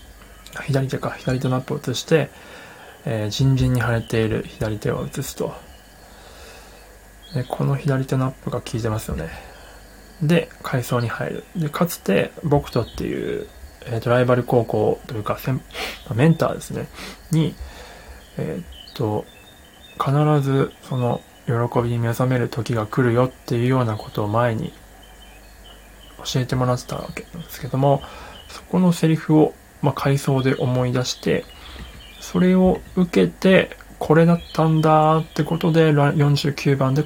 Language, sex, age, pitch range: Japanese, male, 20-39, 120-150 Hz